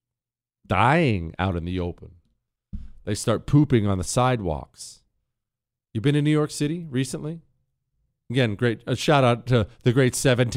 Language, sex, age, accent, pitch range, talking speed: English, male, 40-59, American, 110-140 Hz, 155 wpm